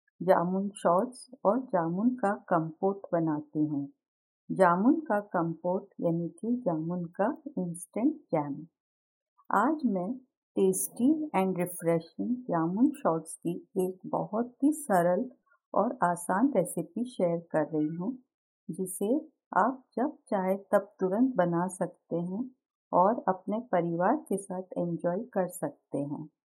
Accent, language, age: native, Hindi, 50-69